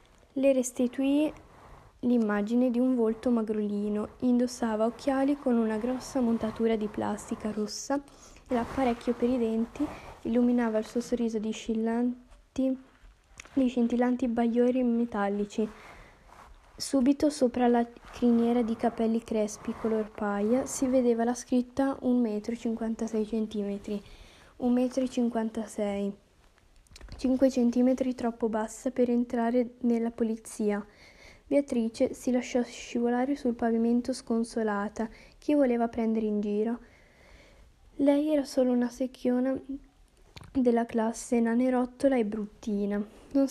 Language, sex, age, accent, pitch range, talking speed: Italian, female, 10-29, native, 225-255 Hz, 110 wpm